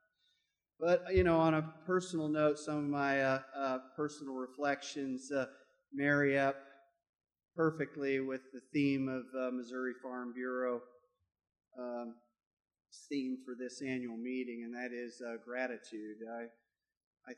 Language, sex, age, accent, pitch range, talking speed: English, male, 30-49, American, 125-140 Hz, 135 wpm